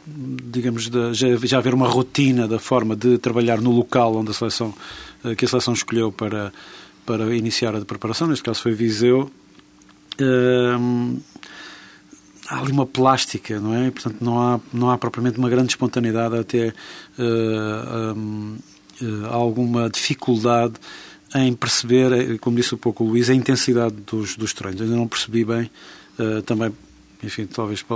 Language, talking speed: Portuguese, 140 wpm